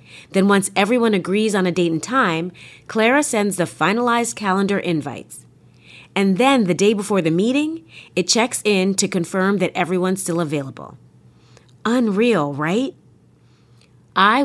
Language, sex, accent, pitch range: English, female, American, 165-220 Hz